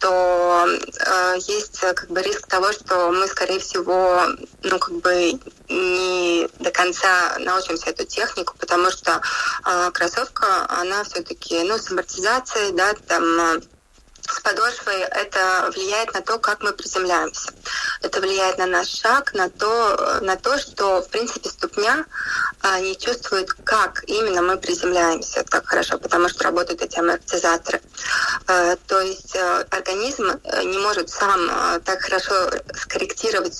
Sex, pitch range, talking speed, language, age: female, 175-210 Hz, 135 wpm, Russian, 20-39